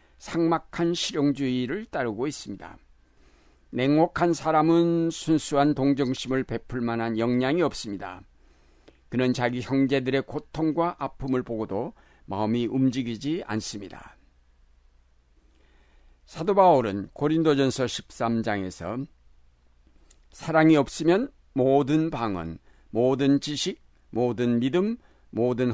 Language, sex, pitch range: Korean, male, 90-145 Hz